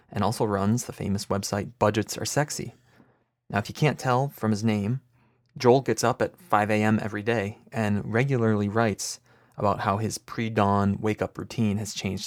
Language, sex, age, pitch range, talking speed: English, male, 30-49, 105-120 Hz, 170 wpm